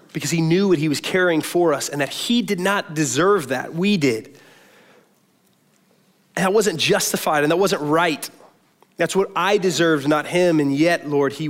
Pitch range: 135-175 Hz